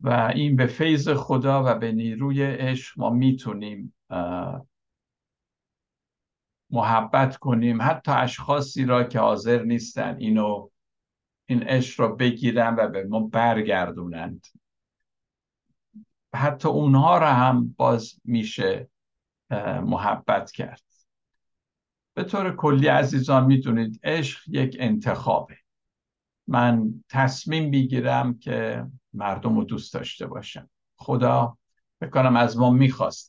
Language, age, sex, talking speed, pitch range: Persian, 60-79, male, 105 wpm, 115-135 Hz